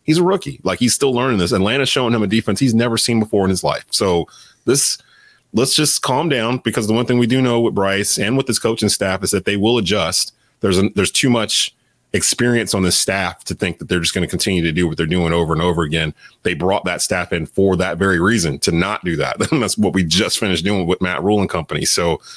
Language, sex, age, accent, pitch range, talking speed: English, male, 30-49, American, 90-120 Hz, 260 wpm